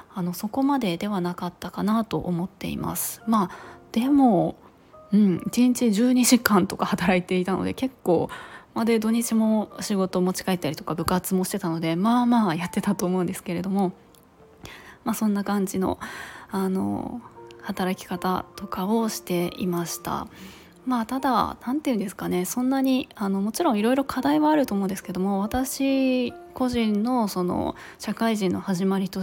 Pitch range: 185-230 Hz